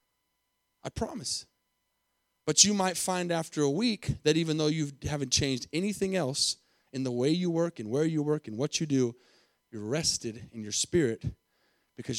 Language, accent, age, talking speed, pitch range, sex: English, American, 30-49, 175 wpm, 150-200 Hz, male